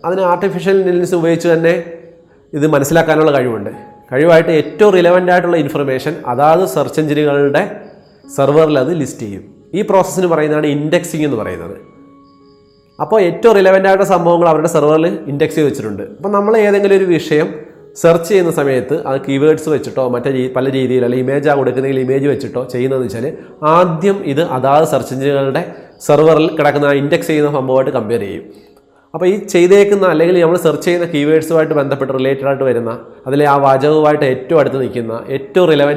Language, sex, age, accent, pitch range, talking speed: Malayalam, male, 30-49, native, 135-175 Hz, 150 wpm